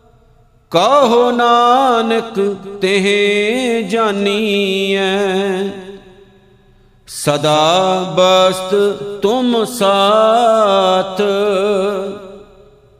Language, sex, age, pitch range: Punjabi, male, 50-69, 195-235 Hz